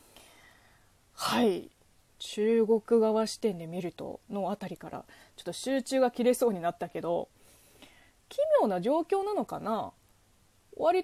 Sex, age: female, 20-39